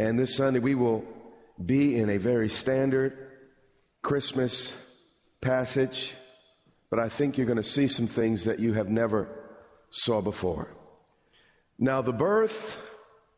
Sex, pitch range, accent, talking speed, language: male, 120-160 Hz, American, 135 wpm, English